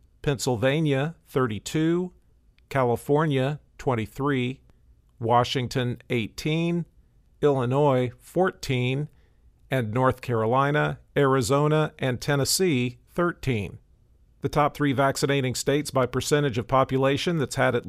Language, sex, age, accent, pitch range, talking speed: English, male, 50-69, American, 120-145 Hz, 90 wpm